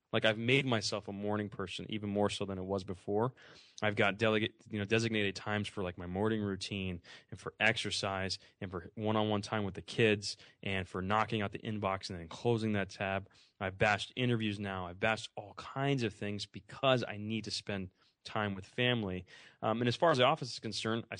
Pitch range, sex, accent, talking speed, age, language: 100-115 Hz, male, American, 220 wpm, 20-39, English